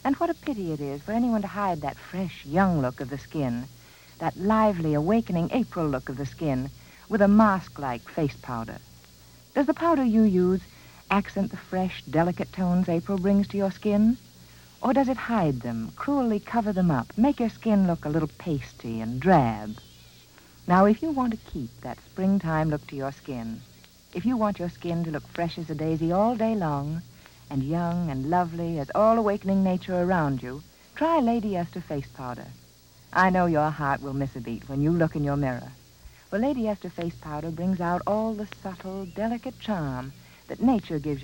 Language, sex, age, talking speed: English, female, 60-79, 190 wpm